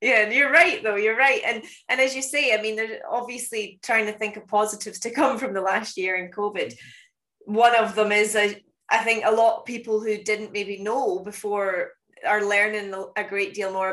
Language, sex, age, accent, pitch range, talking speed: English, female, 20-39, British, 185-215 Hz, 215 wpm